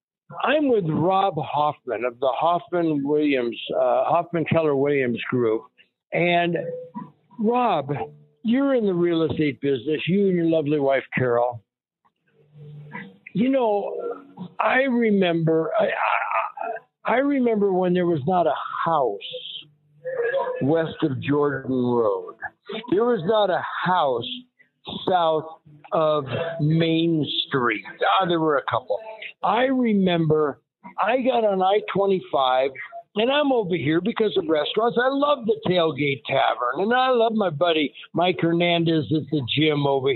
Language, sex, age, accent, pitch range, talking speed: English, male, 60-79, American, 150-210 Hz, 130 wpm